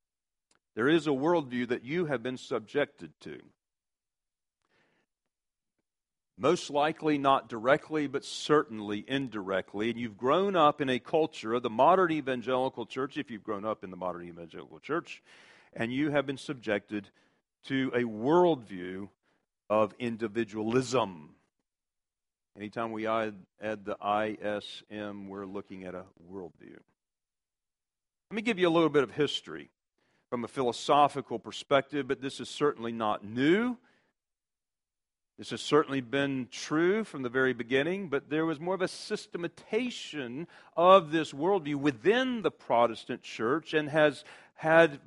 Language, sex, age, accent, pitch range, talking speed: English, male, 50-69, American, 105-150 Hz, 135 wpm